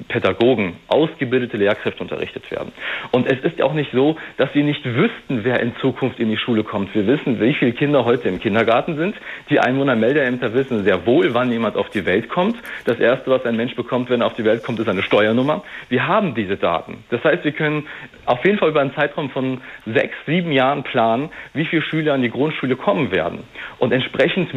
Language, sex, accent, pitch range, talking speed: German, male, German, 115-145 Hz, 210 wpm